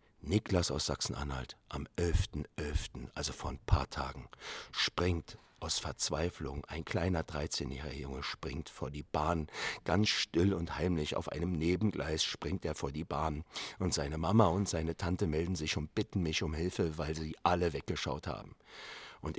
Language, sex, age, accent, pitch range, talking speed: German, male, 50-69, German, 75-95 Hz, 165 wpm